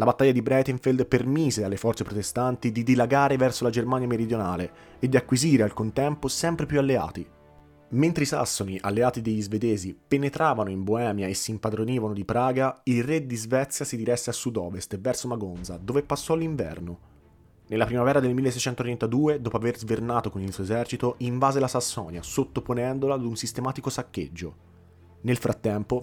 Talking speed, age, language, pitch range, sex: 160 wpm, 30-49, Italian, 110-135 Hz, male